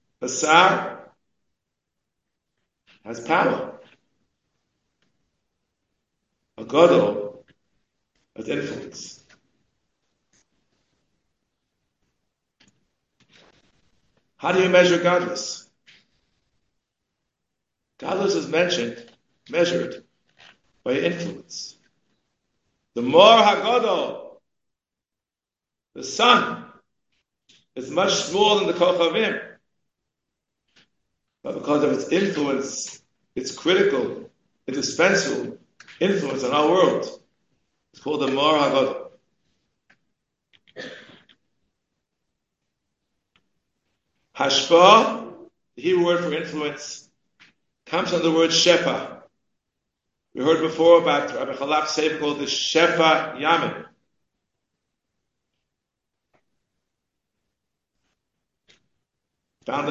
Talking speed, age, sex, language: 70 wpm, 60-79, male, English